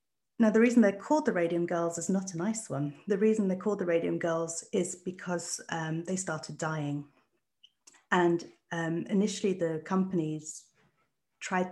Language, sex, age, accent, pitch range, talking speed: English, female, 40-59, British, 155-190 Hz, 165 wpm